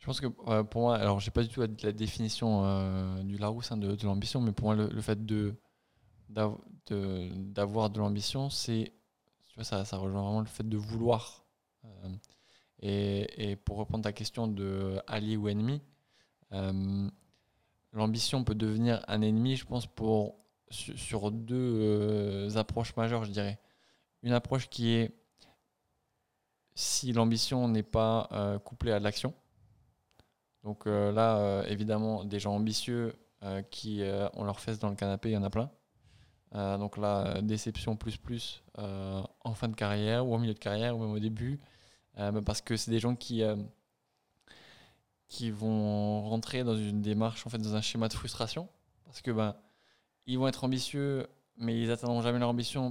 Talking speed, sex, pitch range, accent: 180 wpm, male, 105-115 Hz, French